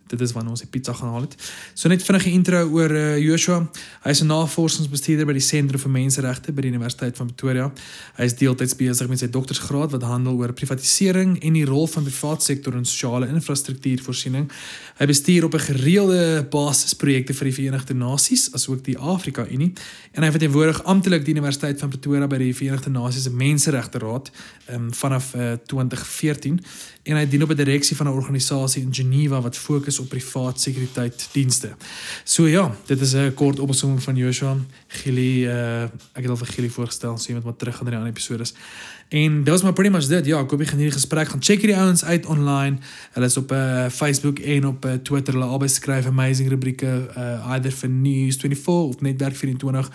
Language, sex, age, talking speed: English, male, 20-39, 195 wpm